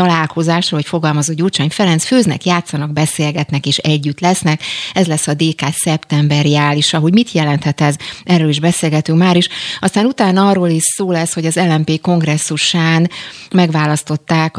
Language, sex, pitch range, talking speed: Hungarian, female, 150-170 Hz, 155 wpm